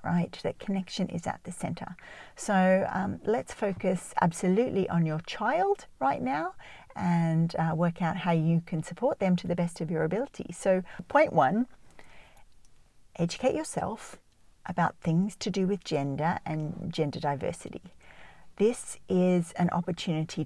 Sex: female